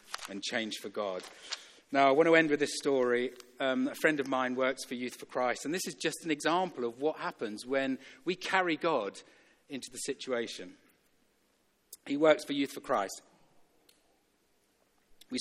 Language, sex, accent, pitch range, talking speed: English, male, British, 120-145 Hz, 175 wpm